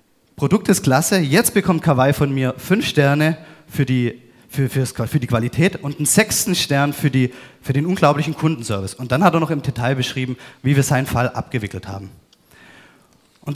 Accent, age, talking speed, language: German, 30-49, 185 wpm, German